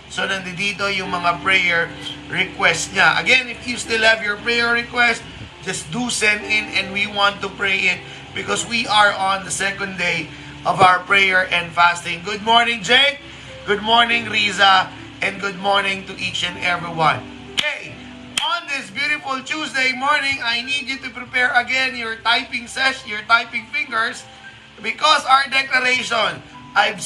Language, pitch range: Filipino, 195-245 Hz